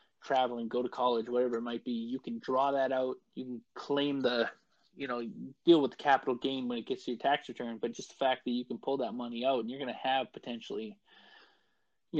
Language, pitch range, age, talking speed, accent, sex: English, 120-135 Hz, 20-39, 240 wpm, American, male